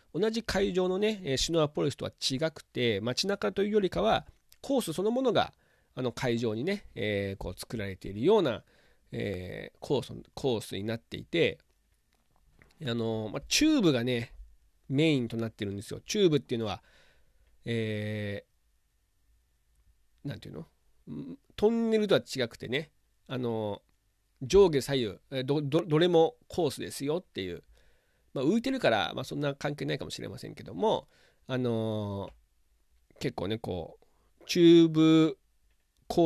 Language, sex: Japanese, male